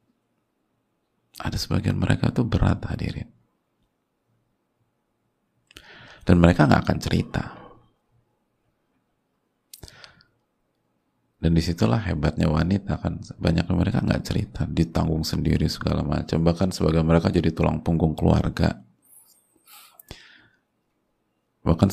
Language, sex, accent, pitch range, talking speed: Indonesian, male, native, 80-95 Hz, 90 wpm